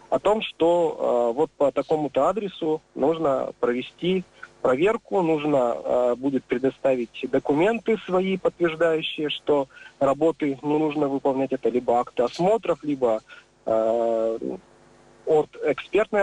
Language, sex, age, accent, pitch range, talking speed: Russian, male, 40-59, native, 135-175 Hz, 115 wpm